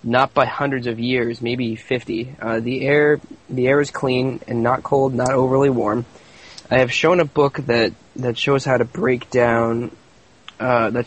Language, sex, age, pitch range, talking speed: English, male, 20-39, 120-135 Hz, 185 wpm